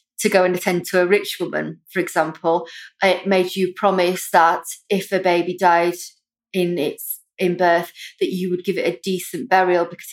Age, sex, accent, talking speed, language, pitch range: 30-49, female, British, 190 wpm, English, 175-215 Hz